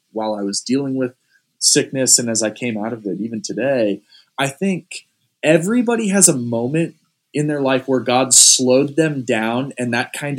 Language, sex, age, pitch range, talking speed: English, male, 20-39, 115-150 Hz, 185 wpm